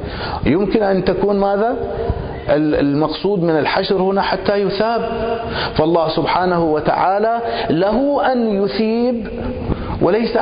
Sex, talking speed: male, 100 wpm